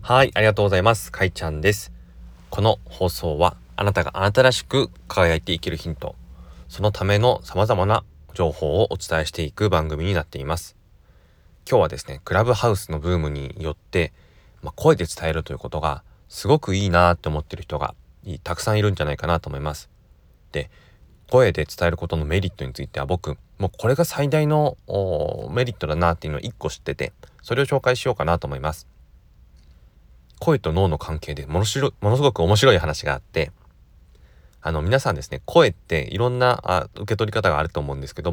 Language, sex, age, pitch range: Japanese, male, 30-49, 80-110 Hz